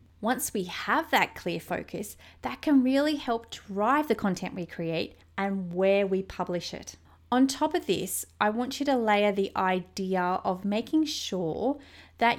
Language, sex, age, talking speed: English, female, 30-49, 170 wpm